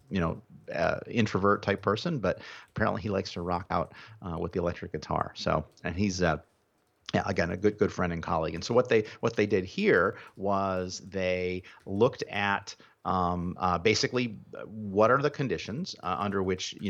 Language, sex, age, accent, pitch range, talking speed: English, male, 40-59, American, 90-110 Hz, 185 wpm